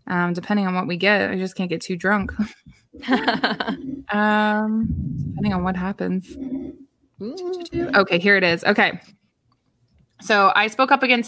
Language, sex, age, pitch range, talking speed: English, female, 20-39, 180-220 Hz, 145 wpm